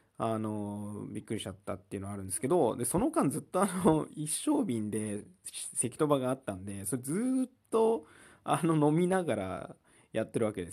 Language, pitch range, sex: Japanese, 105-155 Hz, male